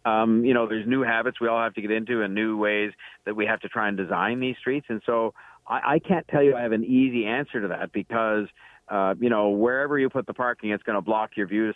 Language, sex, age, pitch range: English, male, 50-69, 100-120 Hz